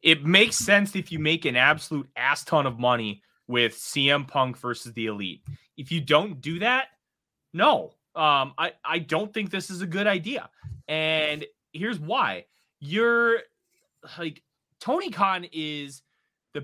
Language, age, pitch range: English, 20-39, 135-220 Hz